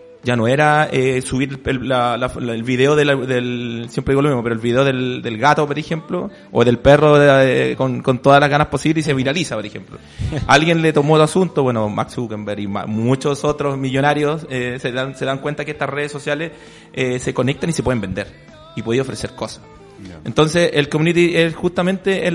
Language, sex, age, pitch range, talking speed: Spanish, male, 30-49, 125-155 Hz, 215 wpm